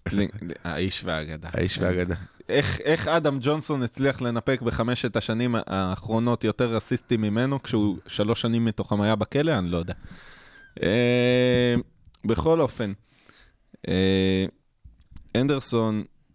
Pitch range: 95-125 Hz